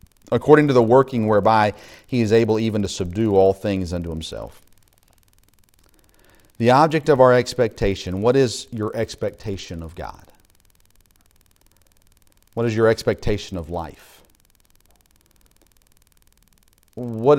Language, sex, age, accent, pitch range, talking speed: English, male, 40-59, American, 95-125 Hz, 115 wpm